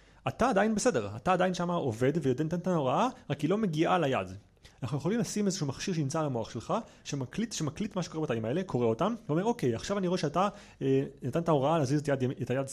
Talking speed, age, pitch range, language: 210 wpm, 30-49, 125-185 Hz, Hebrew